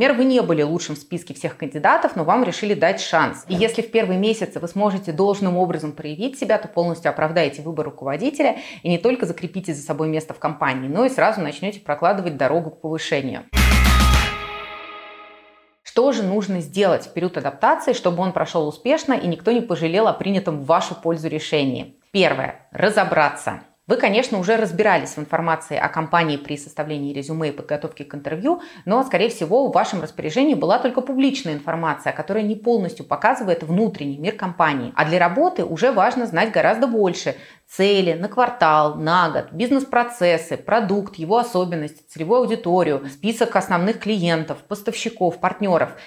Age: 30-49